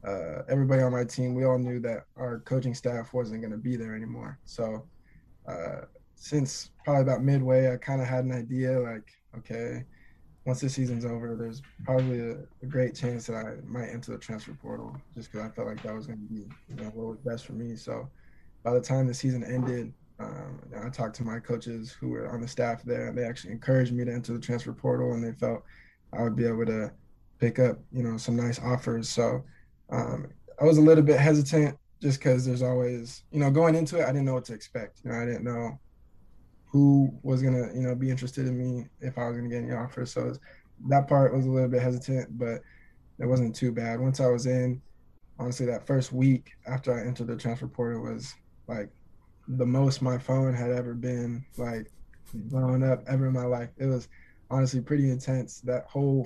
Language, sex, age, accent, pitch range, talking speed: English, male, 20-39, American, 115-130 Hz, 220 wpm